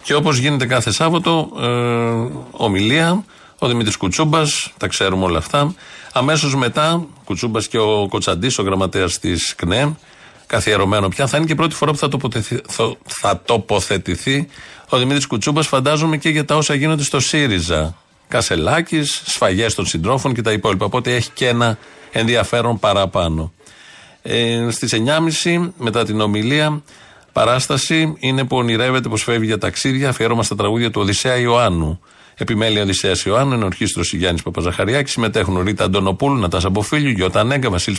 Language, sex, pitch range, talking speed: Greek, male, 105-145 Hz, 150 wpm